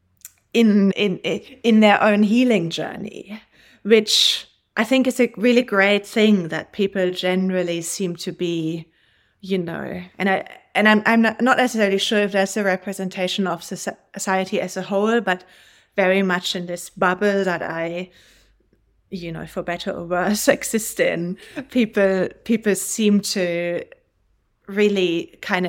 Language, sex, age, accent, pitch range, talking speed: English, female, 30-49, German, 180-220 Hz, 145 wpm